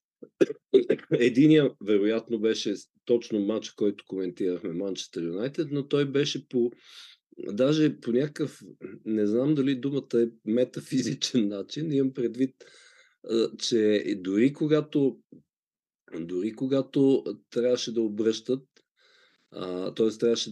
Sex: male